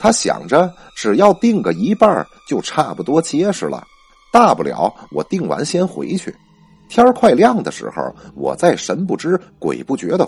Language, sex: Chinese, male